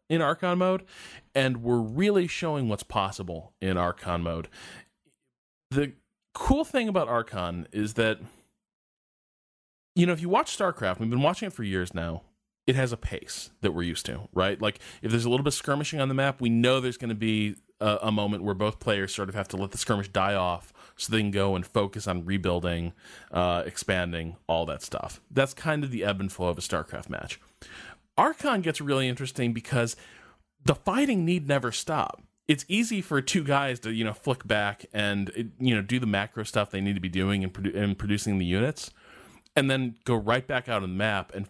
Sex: male